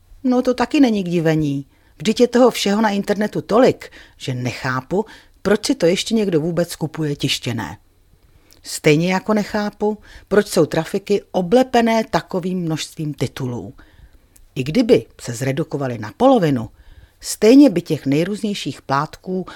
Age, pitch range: 40-59, 135-190 Hz